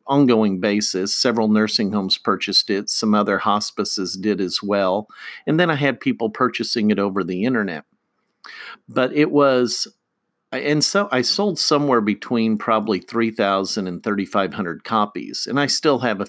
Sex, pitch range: male, 100-130 Hz